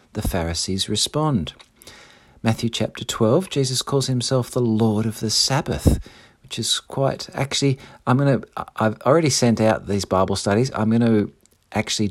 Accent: Australian